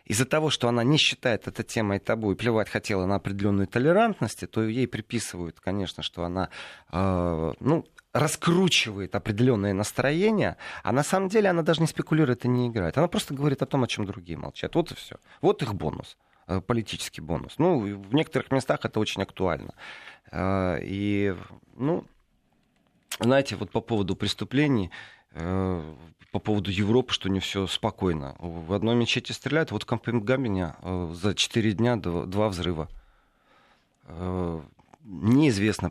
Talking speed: 155 wpm